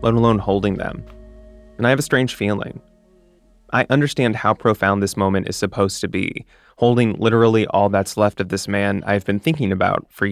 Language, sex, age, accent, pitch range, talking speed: English, male, 20-39, American, 95-115 Hz, 190 wpm